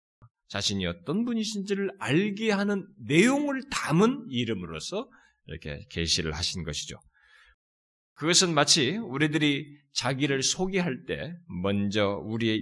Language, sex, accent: Korean, male, native